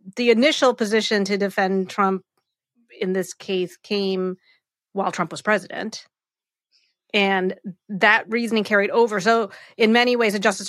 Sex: female